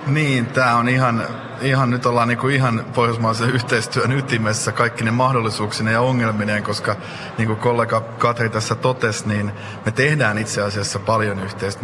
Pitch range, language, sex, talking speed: 105-130 Hz, Finnish, male, 150 wpm